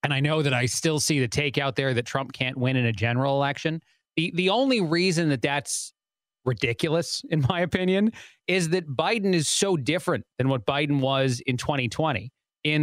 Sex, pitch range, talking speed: male, 125-160 Hz, 195 wpm